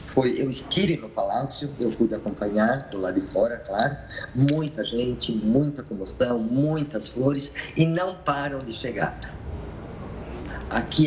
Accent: Brazilian